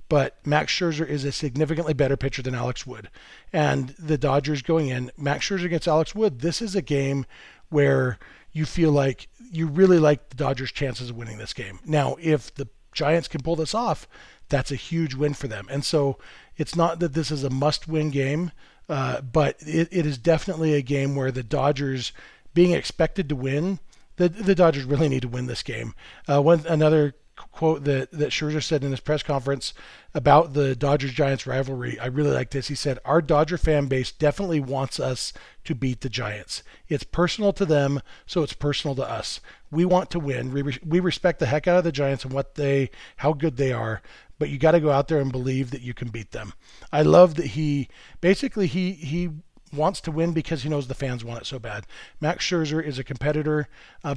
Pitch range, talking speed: 135-160 Hz, 210 wpm